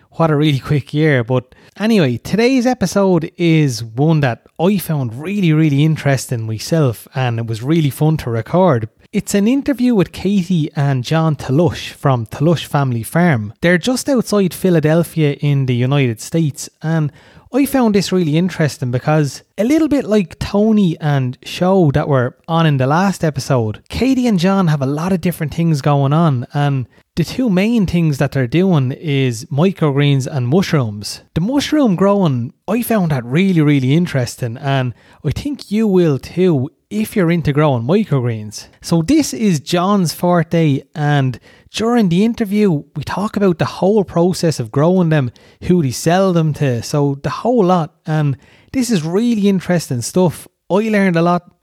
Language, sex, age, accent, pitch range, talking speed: English, male, 30-49, Irish, 140-190 Hz, 170 wpm